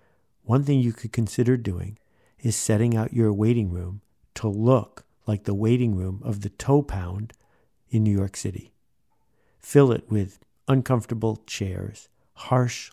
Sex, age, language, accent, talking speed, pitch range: male, 50-69, English, American, 150 wpm, 105-130 Hz